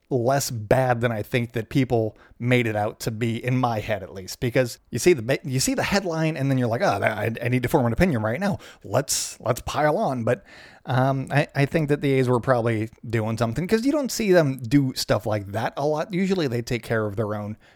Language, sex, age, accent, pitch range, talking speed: English, male, 30-49, American, 115-155 Hz, 250 wpm